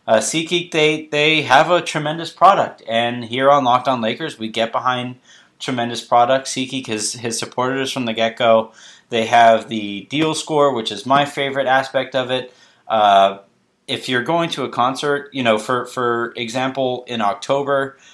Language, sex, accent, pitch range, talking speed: English, male, American, 110-135 Hz, 180 wpm